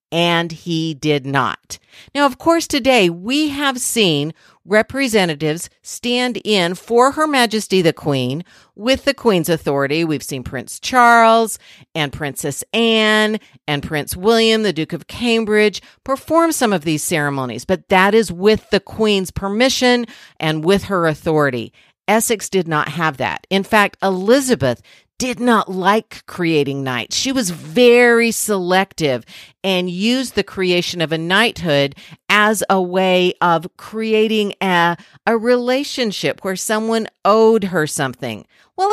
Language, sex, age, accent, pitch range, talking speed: English, female, 50-69, American, 165-230 Hz, 140 wpm